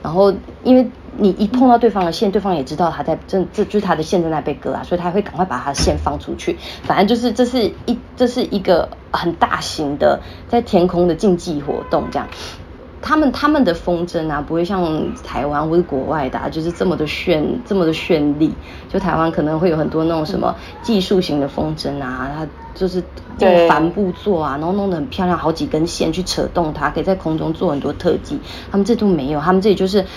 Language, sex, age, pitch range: Chinese, female, 20-39, 160-205 Hz